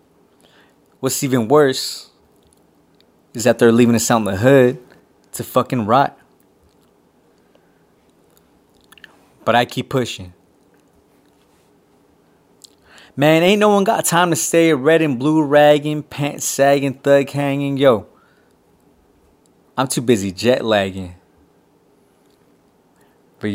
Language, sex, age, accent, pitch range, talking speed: English, male, 20-39, American, 110-150 Hz, 105 wpm